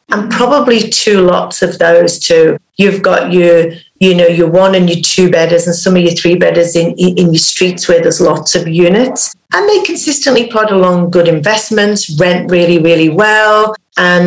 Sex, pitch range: female, 175-210 Hz